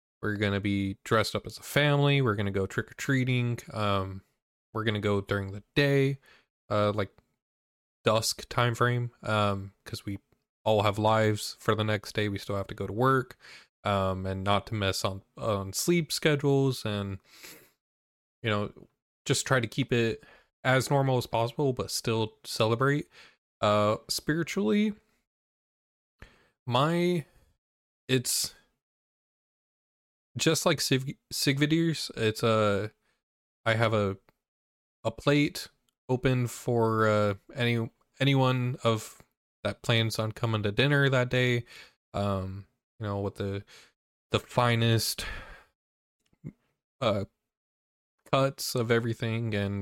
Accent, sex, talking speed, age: American, male, 130 wpm, 20-39